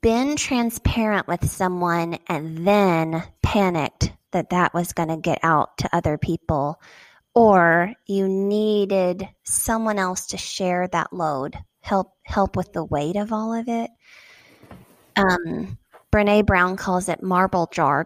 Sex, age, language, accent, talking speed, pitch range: female, 20-39, English, American, 140 wpm, 180-210 Hz